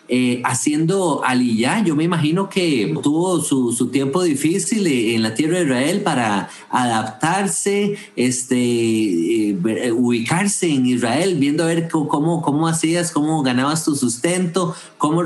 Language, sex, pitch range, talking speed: English, male, 125-185 Hz, 140 wpm